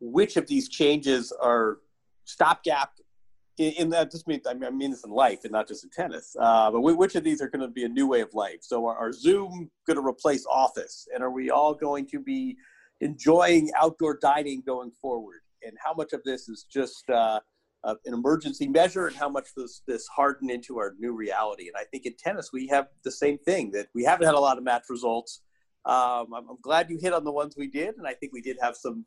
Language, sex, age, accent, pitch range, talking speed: English, male, 40-59, American, 120-170 Hz, 240 wpm